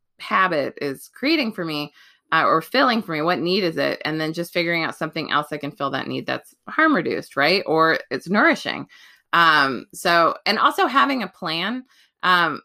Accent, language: American, English